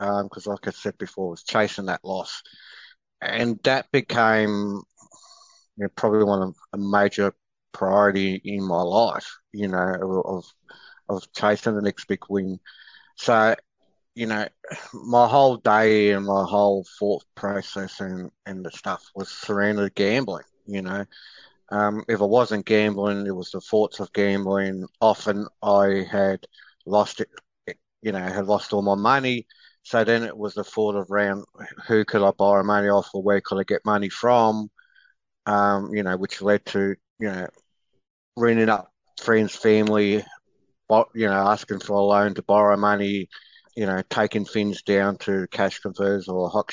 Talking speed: 165 wpm